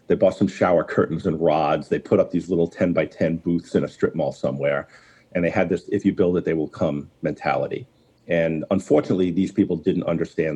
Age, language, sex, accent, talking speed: 50-69, English, male, American, 220 wpm